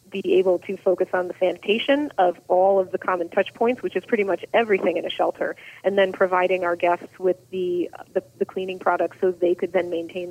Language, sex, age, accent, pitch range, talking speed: English, female, 30-49, American, 175-195 Hz, 220 wpm